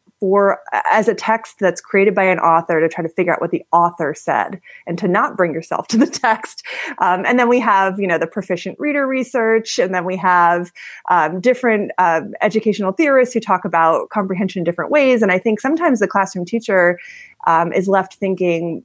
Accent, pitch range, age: American, 175-220 Hz, 30-49